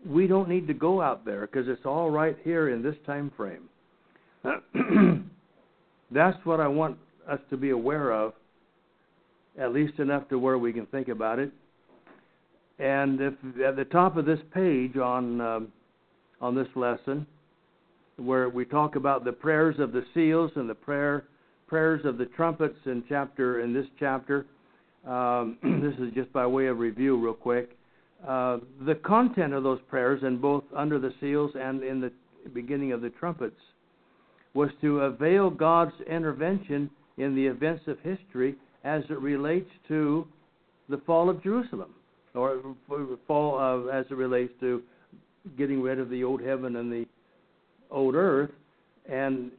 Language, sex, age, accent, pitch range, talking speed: English, male, 60-79, American, 130-160 Hz, 160 wpm